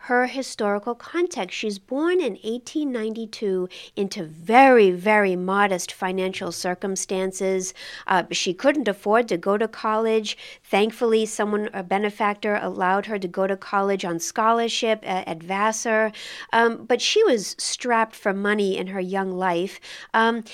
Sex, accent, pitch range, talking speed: female, American, 200-265 Hz, 140 wpm